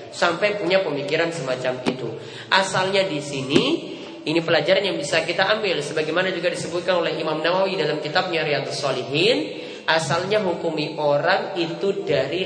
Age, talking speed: 20-39, 140 wpm